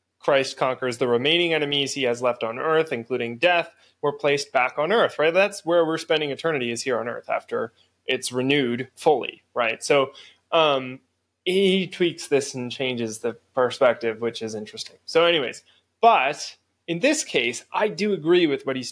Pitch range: 135-175 Hz